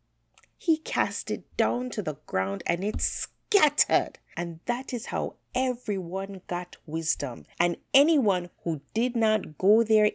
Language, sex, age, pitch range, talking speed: English, female, 30-49, 150-240 Hz, 140 wpm